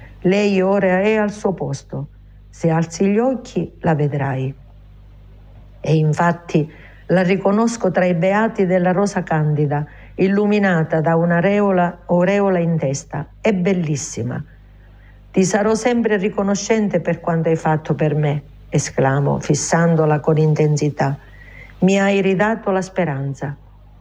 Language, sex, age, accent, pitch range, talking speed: Italian, female, 50-69, native, 140-200 Hz, 120 wpm